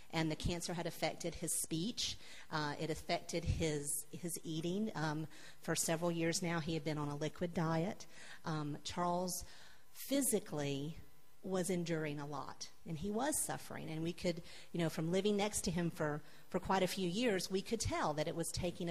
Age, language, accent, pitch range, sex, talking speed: 40-59, English, American, 155-195 Hz, female, 185 wpm